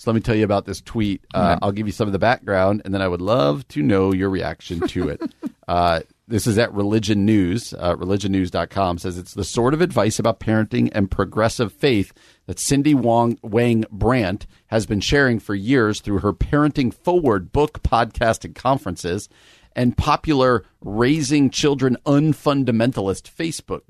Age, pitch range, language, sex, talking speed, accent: 40-59, 95-125 Hz, English, male, 175 wpm, American